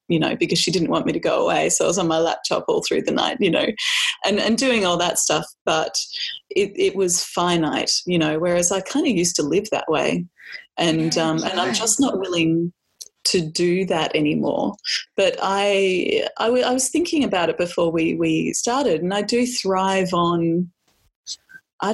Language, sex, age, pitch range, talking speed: English, female, 20-39, 165-215 Hz, 200 wpm